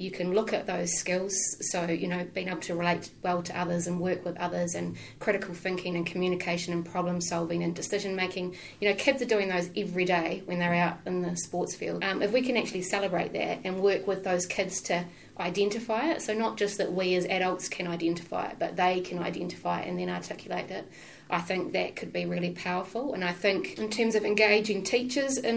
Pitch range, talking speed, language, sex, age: 175-205 Hz, 220 wpm, English, female, 30-49